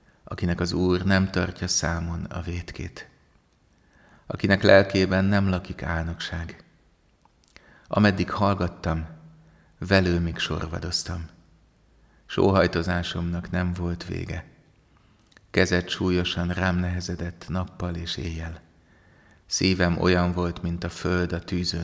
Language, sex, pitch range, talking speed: Hungarian, male, 80-90 Hz, 100 wpm